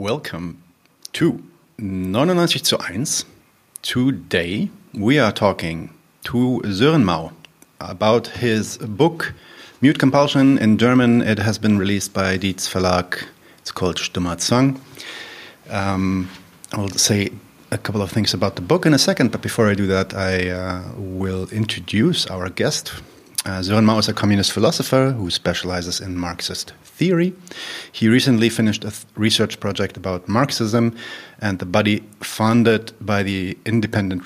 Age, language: 30-49, German